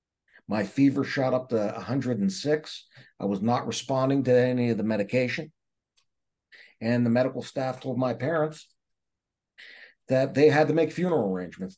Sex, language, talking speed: male, English, 150 wpm